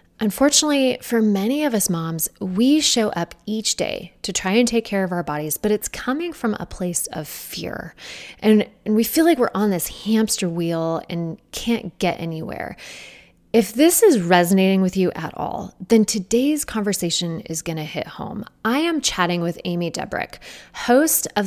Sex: female